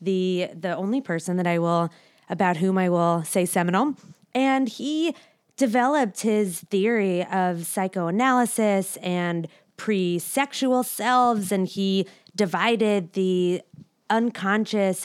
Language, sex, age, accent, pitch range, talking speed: English, female, 20-39, American, 180-225 Hz, 110 wpm